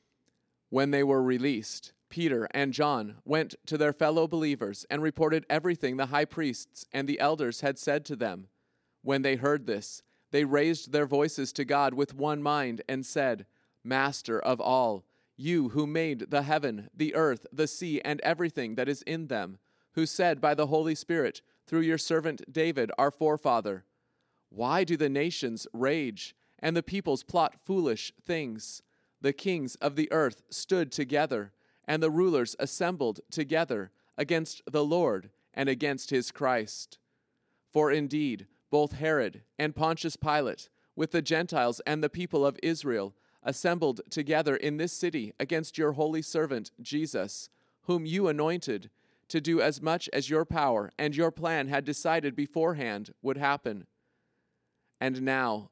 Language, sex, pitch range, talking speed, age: English, male, 135-160 Hz, 155 wpm, 30-49